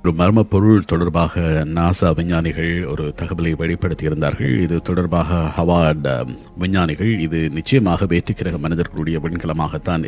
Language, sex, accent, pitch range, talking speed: Tamil, male, native, 80-105 Hz, 100 wpm